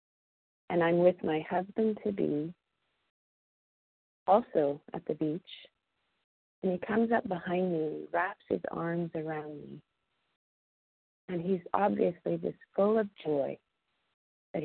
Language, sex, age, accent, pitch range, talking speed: English, female, 40-59, American, 140-190 Hz, 115 wpm